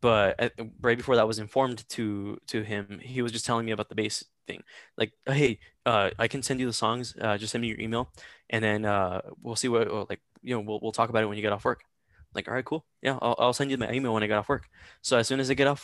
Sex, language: male, English